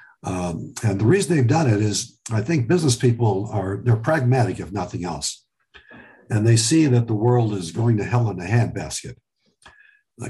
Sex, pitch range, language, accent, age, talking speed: male, 100-125 Hz, English, American, 60-79, 185 wpm